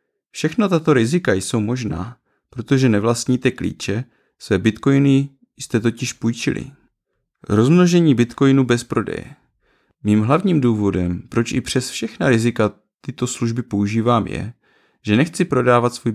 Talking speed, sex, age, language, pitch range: 125 wpm, male, 30-49, Czech, 110-145 Hz